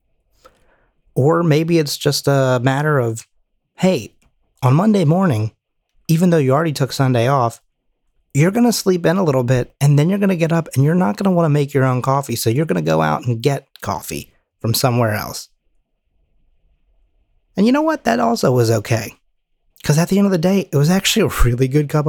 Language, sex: English, male